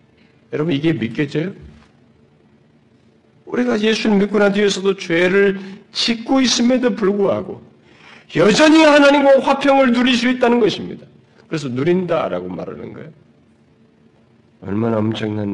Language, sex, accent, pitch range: Korean, male, native, 190-270 Hz